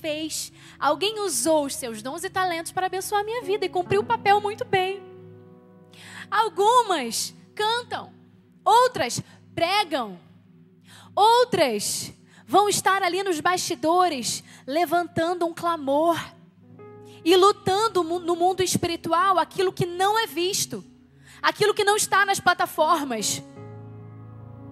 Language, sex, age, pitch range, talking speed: Portuguese, female, 10-29, 220-360 Hz, 115 wpm